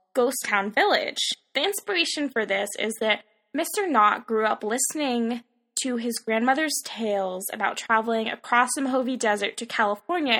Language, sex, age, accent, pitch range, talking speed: English, female, 10-29, American, 215-275 Hz, 150 wpm